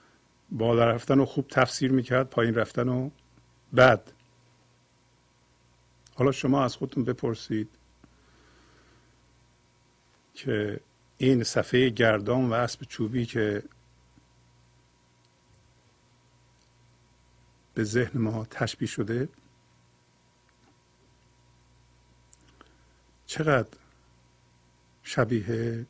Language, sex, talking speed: Persian, male, 70 wpm